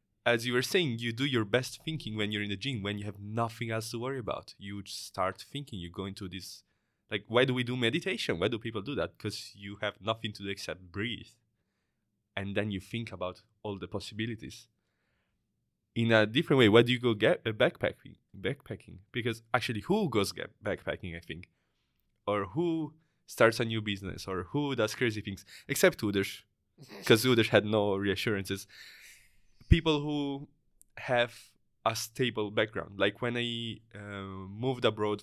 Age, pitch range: 20-39, 100-120 Hz